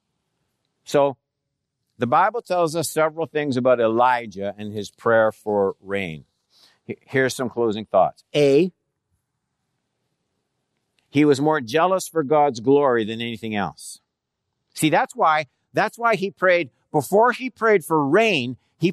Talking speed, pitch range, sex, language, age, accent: 135 wpm, 135-185 Hz, male, English, 60-79, American